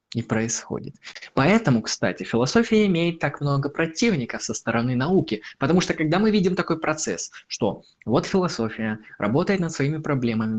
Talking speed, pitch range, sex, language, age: 140 wpm, 125-180 Hz, male, Russian, 20-39